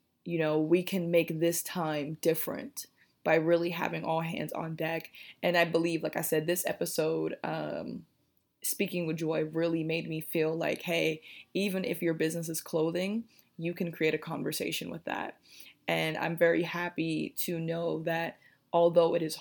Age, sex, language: 20-39, female, English